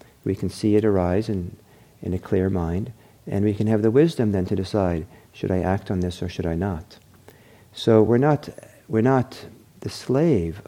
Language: English